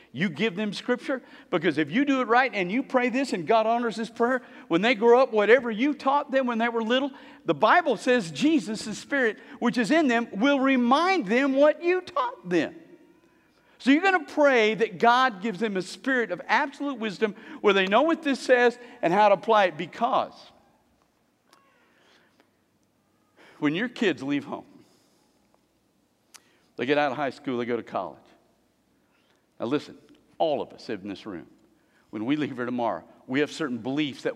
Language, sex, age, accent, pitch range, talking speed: English, male, 50-69, American, 180-260 Hz, 185 wpm